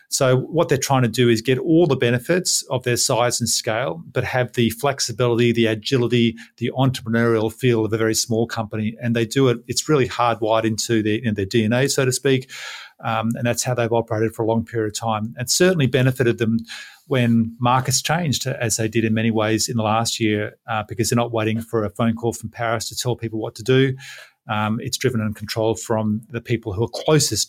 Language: English